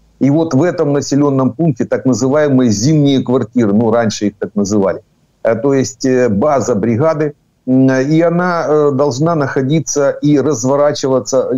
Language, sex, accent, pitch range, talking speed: Ukrainian, male, native, 120-145 Hz, 130 wpm